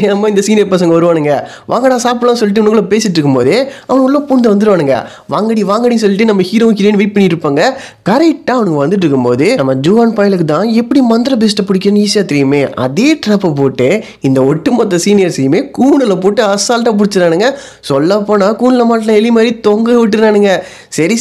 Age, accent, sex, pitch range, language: 20-39, native, male, 175-235 Hz, Tamil